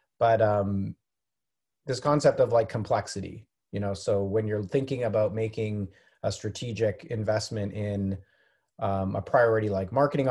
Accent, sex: American, male